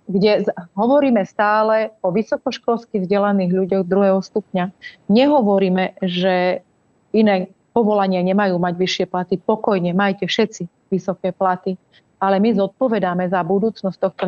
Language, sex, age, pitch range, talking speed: Slovak, female, 30-49, 185-220 Hz, 120 wpm